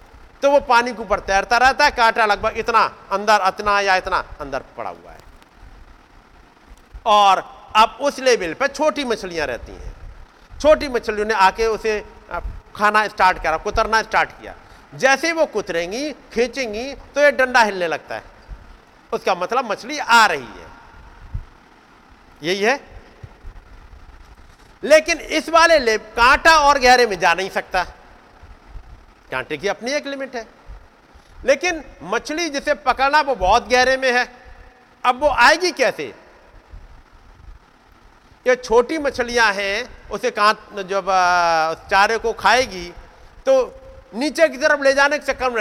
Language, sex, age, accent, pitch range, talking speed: Hindi, male, 50-69, native, 205-290 Hz, 140 wpm